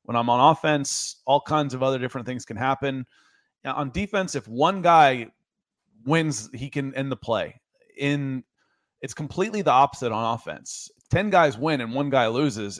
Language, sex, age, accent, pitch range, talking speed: English, male, 30-49, American, 120-150 Hz, 185 wpm